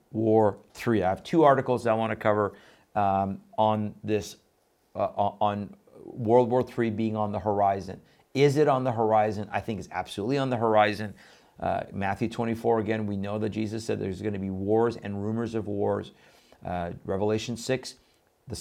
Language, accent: English, American